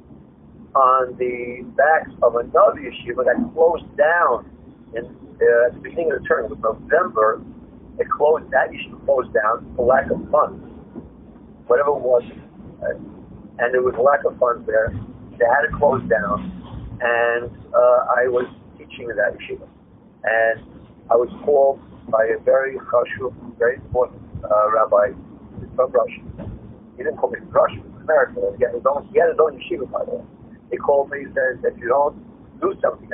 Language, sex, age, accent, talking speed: English, male, 50-69, American, 170 wpm